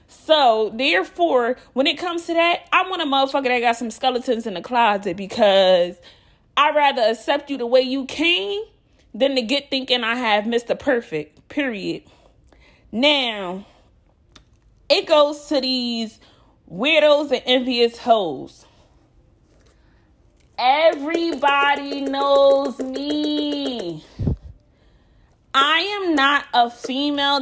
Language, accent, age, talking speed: English, American, 30-49, 115 wpm